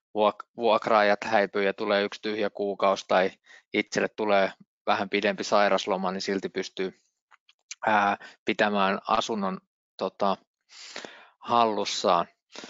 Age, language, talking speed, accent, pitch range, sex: 20-39, Finnish, 90 wpm, native, 115-135 Hz, male